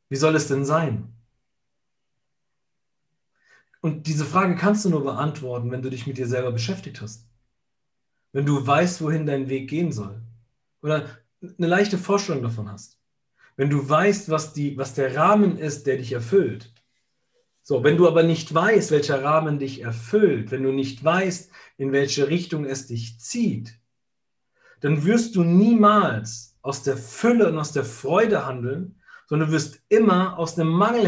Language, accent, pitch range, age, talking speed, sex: German, German, 125-175 Hz, 40-59, 165 wpm, male